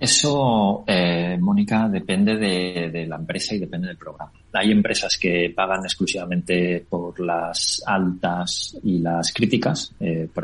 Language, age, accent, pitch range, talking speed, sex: Spanish, 30-49, Spanish, 85-105 Hz, 145 wpm, male